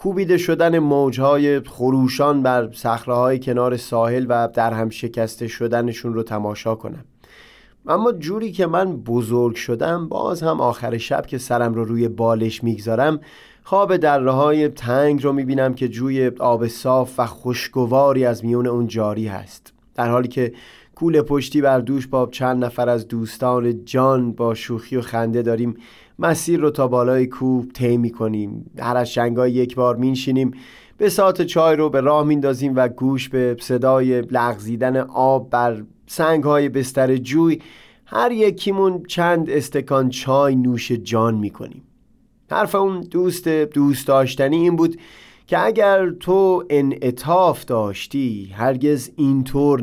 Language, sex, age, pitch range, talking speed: Persian, male, 30-49, 120-145 Hz, 145 wpm